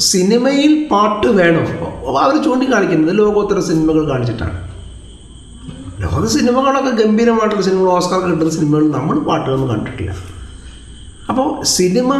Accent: native